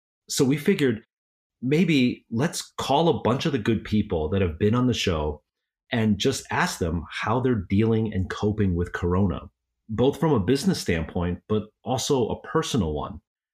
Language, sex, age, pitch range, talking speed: English, male, 30-49, 90-115 Hz, 175 wpm